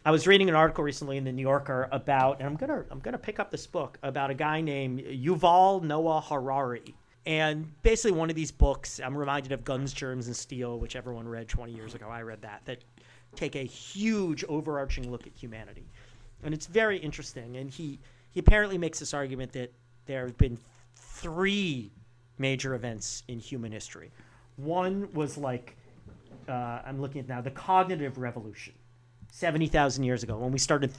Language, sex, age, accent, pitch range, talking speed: English, male, 40-59, American, 120-150 Hz, 190 wpm